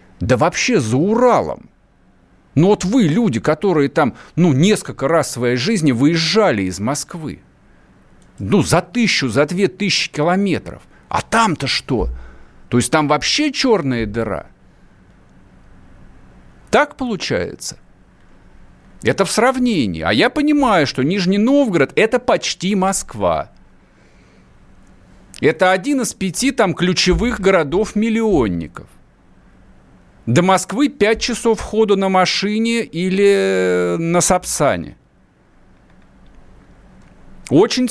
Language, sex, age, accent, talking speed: Russian, male, 50-69, native, 105 wpm